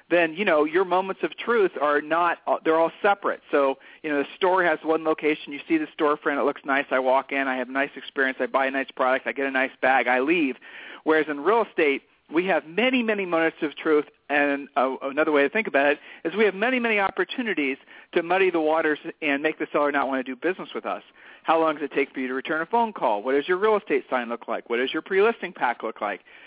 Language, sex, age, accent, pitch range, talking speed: English, male, 40-59, American, 140-185 Hz, 260 wpm